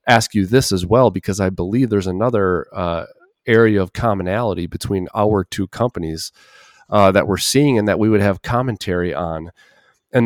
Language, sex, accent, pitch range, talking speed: English, male, American, 90-120 Hz, 175 wpm